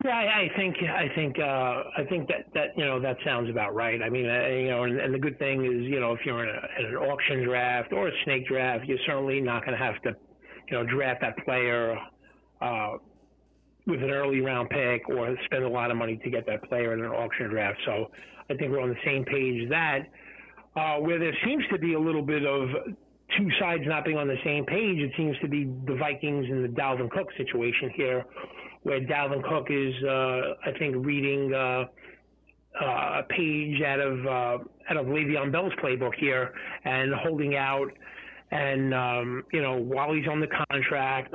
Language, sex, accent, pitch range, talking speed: English, male, American, 125-150 Hz, 215 wpm